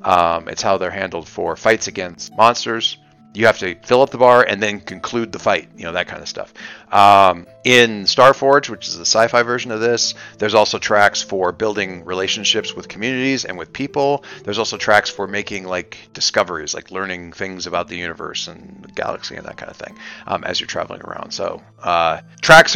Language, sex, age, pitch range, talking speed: English, male, 40-59, 95-120 Hz, 205 wpm